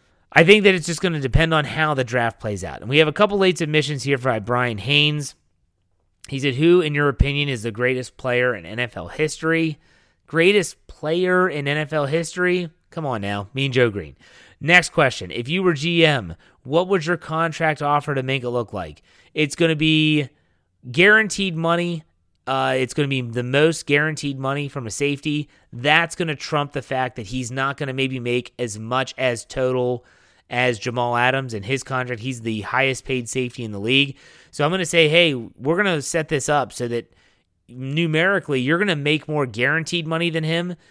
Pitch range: 120-155 Hz